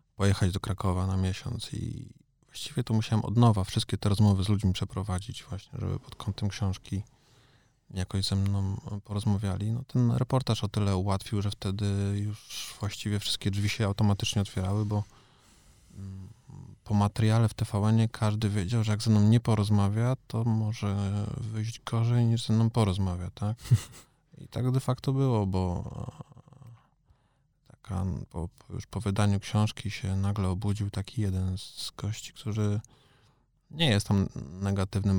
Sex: male